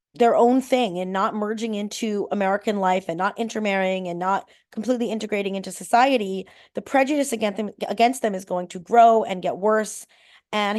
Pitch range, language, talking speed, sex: 185-230 Hz, English, 180 wpm, female